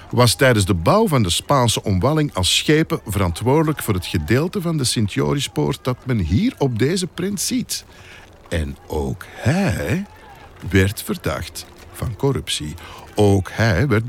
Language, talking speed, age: Dutch, 145 wpm, 50-69